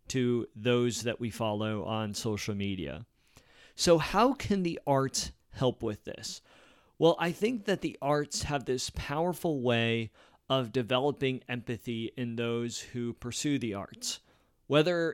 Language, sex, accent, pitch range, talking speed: English, male, American, 115-150 Hz, 145 wpm